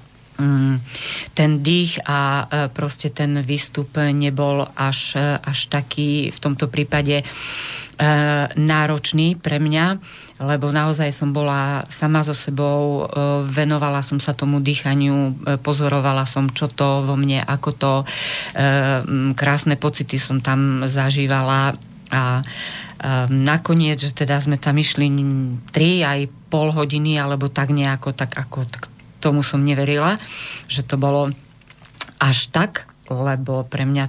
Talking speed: 120 wpm